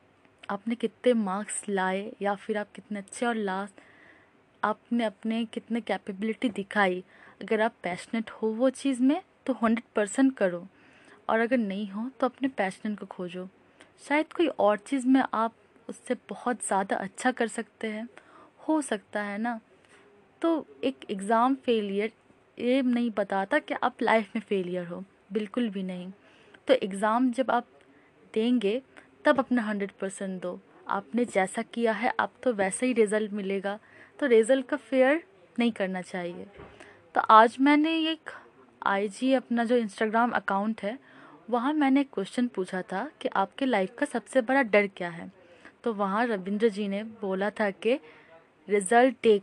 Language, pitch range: Hindi, 200-250 Hz